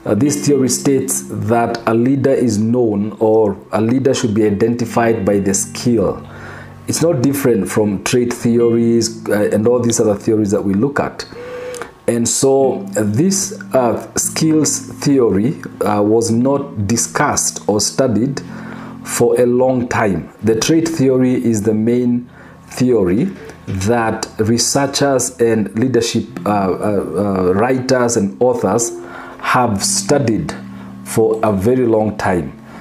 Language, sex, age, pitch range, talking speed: English, male, 40-59, 110-135 Hz, 135 wpm